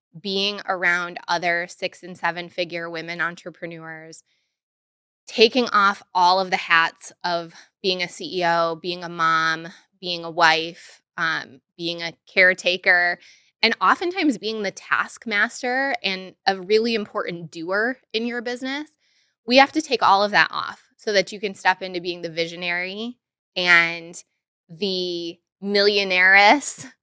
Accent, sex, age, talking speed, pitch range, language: American, female, 20-39, 135 wpm, 170-205 Hz, English